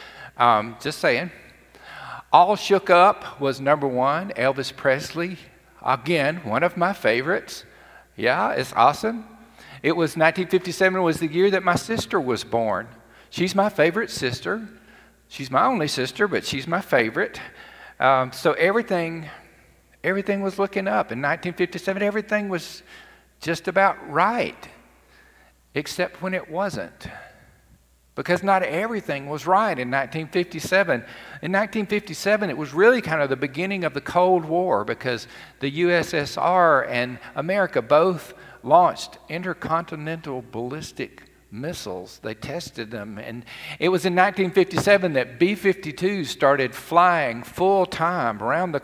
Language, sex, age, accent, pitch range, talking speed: English, male, 50-69, American, 130-185 Hz, 130 wpm